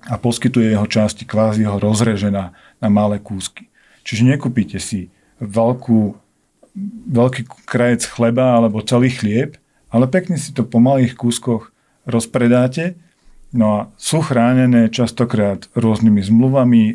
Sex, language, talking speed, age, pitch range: male, Slovak, 125 wpm, 40-59, 110-120 Hz